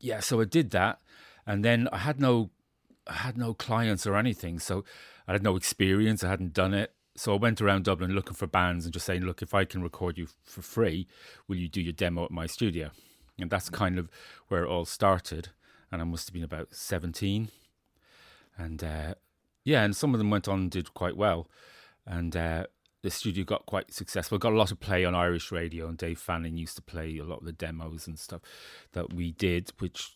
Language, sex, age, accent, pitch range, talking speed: English, male, 30-49, British, 85-100 Hz, 225 wpm